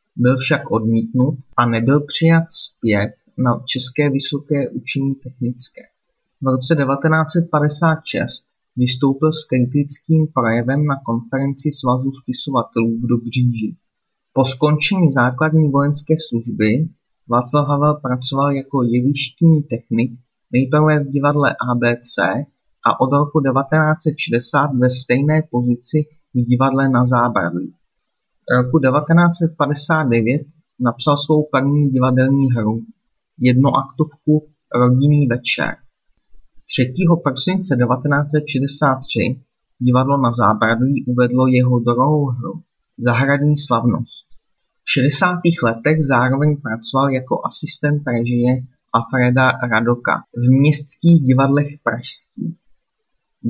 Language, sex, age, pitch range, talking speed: Czech, male, 30-49, 125-150 Hz, 100 wpm